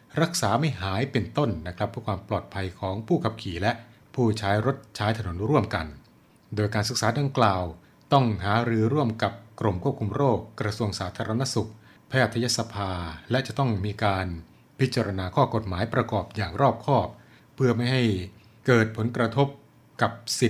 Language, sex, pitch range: Thai, male, 105-125 Hz